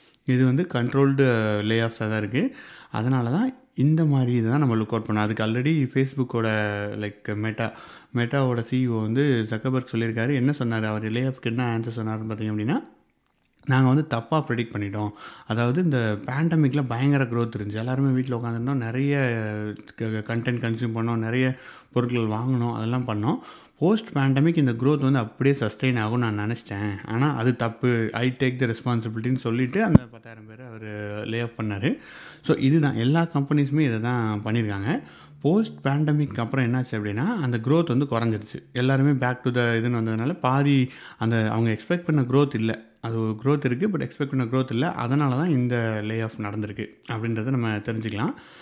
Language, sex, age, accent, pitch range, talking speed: Tamil, male, 30-49, native, 110-135 Hz, 160 wpm